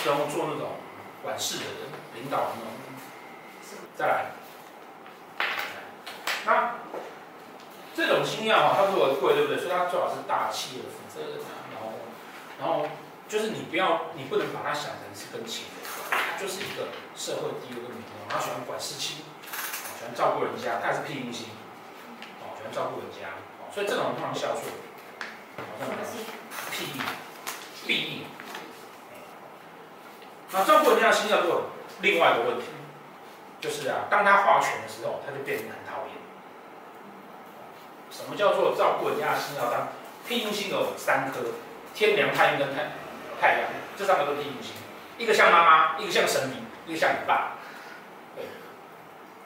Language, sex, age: Chinese, male, 30-49